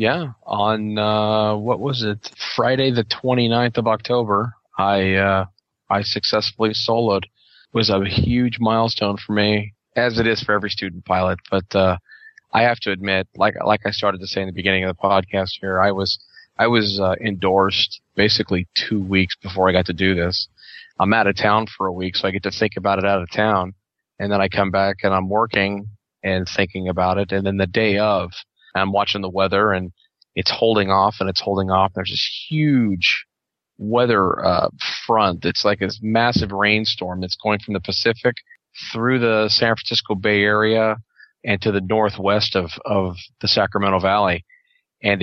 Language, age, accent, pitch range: English, 20-39, American, 95-110 Hz